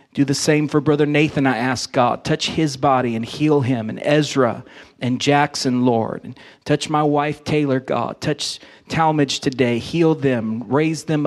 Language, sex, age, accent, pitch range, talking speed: English, male, 40-59, American, 125-150 Hz, 170 wpm